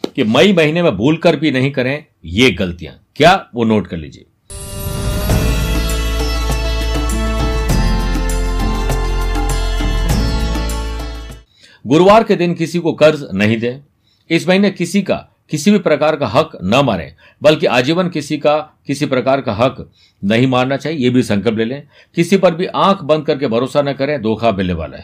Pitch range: 105-155 Hz